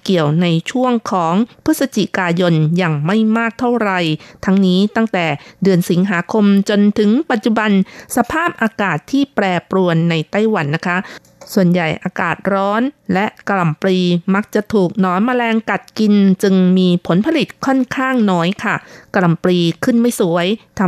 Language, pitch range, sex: Thai, 175-225 Hz, female